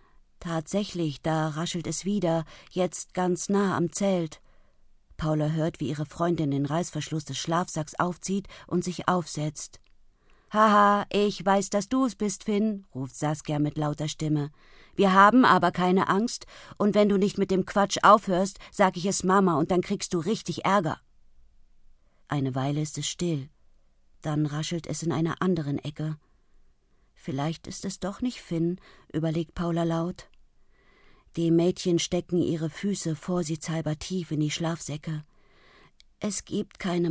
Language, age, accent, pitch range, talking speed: German, 50-69, German, 155-195 Hz, 150 wpm